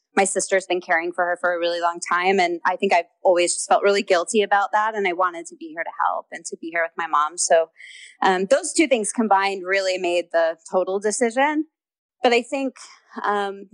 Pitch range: 175-235 Hz